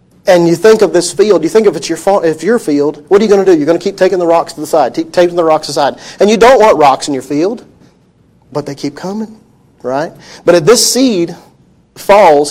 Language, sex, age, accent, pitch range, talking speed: English, male, 40-59, American, 150-195 Hz, 265 wpm